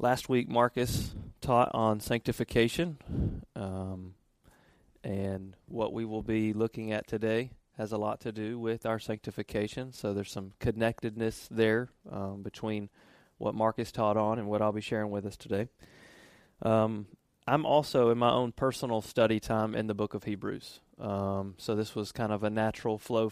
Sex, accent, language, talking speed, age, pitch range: male, American, English, 165 wpm, 30-49, 105-120 Hz